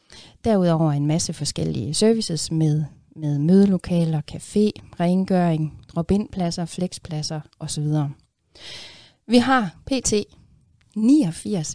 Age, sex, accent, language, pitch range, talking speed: 30-49, female, native, Danish, 155-195 Hz, 85 wpm